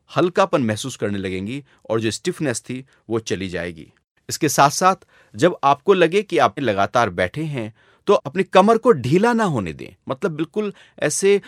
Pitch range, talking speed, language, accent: 115-180 Hz, 175 wpm, Hindi, native